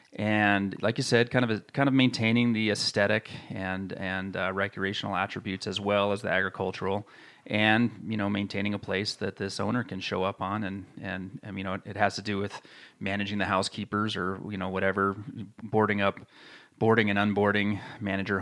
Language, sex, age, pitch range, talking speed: English, male, 30-49, 100-115 Hz, 190 wpm